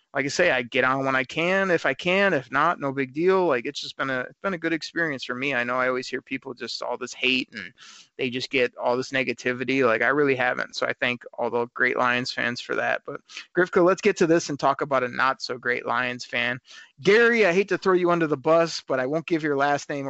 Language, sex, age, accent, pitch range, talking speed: English, male, 30-49, American, 130-165 Hz, 270 wpm